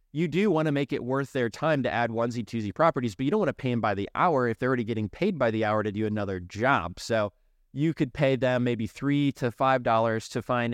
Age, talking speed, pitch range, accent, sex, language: 20-39, 255 wpm, 110-130 Hz, American, male, English